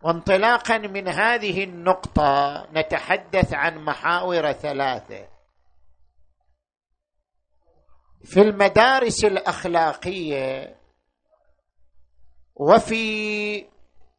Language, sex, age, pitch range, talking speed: Arabic, male, 50-69, 140-210 Hz, 50 wpm